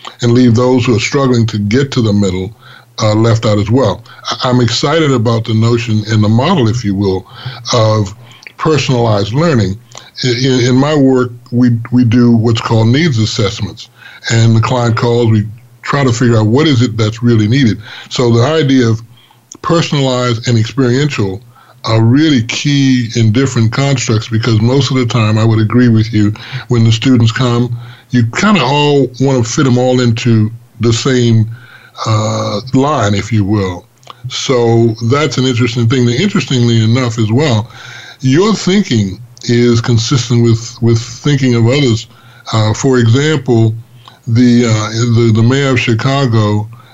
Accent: American